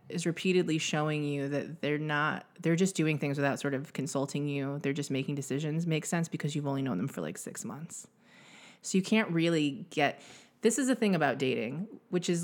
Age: 20-39